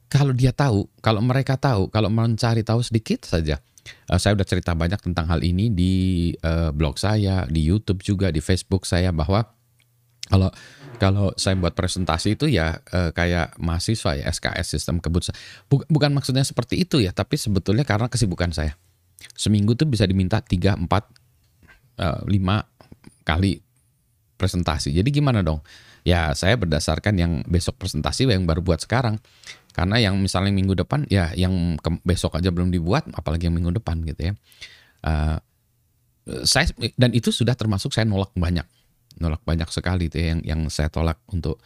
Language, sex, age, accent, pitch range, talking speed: Indonesian, male, 20-39, native, 85-115 Hz, 160 wpm